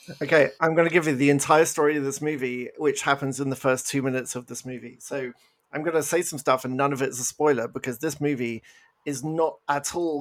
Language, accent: English, British